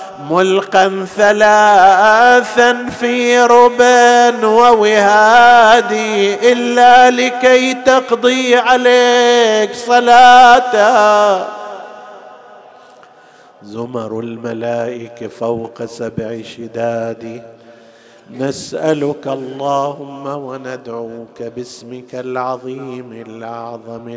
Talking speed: 50 wpm